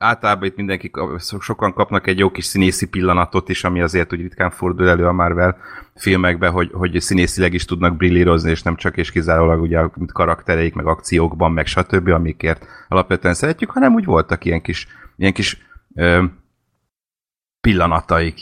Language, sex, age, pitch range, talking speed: Hungarian, male, 30-49, 85-100 Hz, 160 wpm